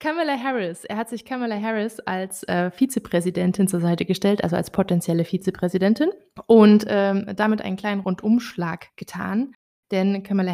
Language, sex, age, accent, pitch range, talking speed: German, female, 20-39, German, 180-210 Hz, 150 wpm